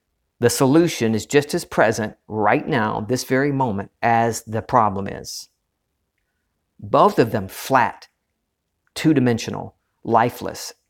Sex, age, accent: male, 50-69, American